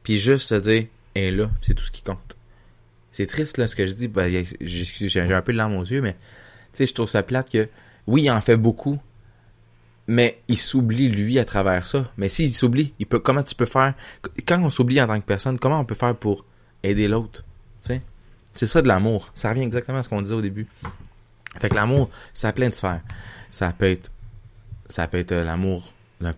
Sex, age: male, 20-39